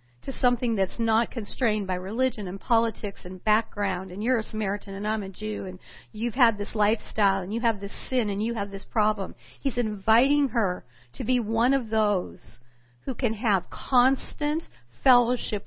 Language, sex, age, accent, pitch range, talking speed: English, female, 50-69, American, 185-255 Hz, 180 wpm